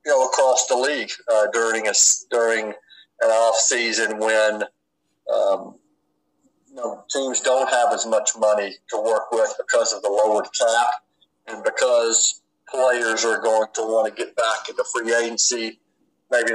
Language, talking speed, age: English, 165 wpm, 50-69